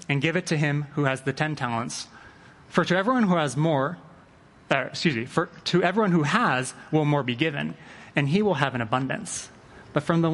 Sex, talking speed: male, 215 wpm